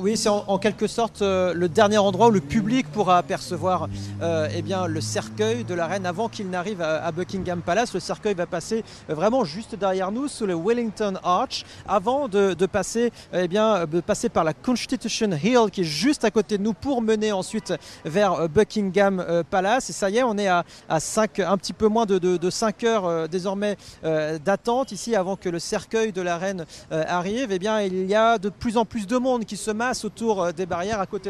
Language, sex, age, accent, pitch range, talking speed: French, male, 40-59, French, 180-215 Hz, 220 wpm